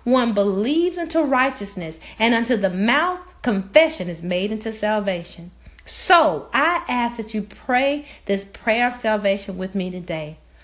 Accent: American